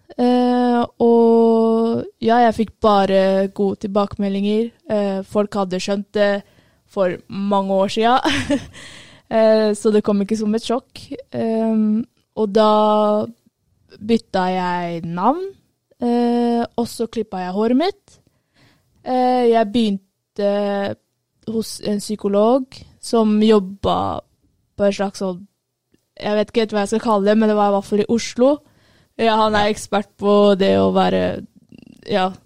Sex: female